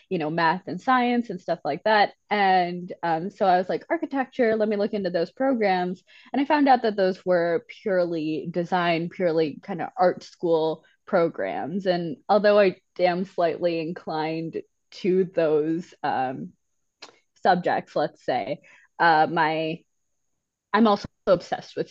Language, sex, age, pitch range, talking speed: English, female, 20-39, 165-210 Hz, 150 wpm